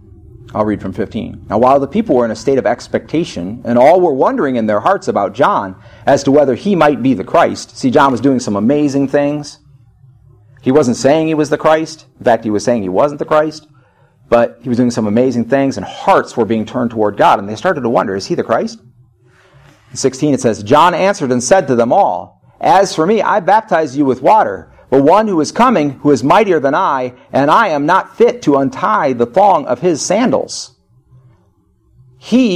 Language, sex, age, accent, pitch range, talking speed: English, male, 40-59, American, 120-155 Hz, 220 wpm